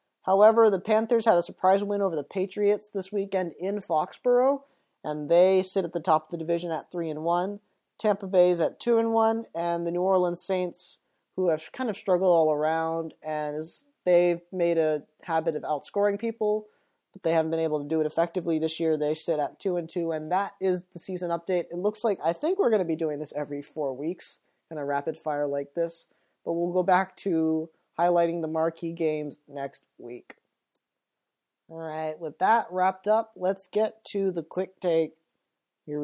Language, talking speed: English, 195 wpm